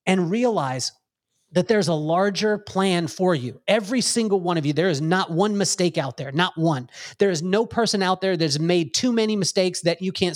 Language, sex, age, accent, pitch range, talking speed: English, male, 30-49, American, 150-195 Hz, 215 wpm